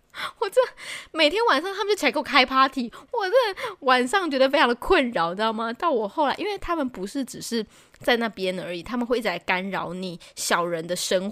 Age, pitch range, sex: 20-39, 185-275 Hz, female